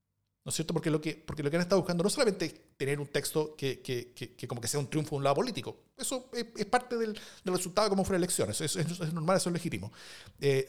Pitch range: 145-190 Hz